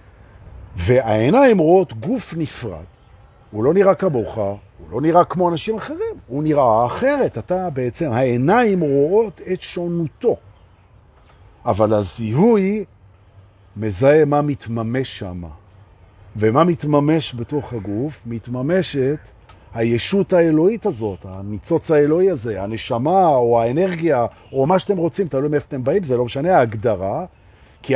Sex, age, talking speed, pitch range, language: male, 50-69, 120 wpm, 105-170 Hz, Hebrew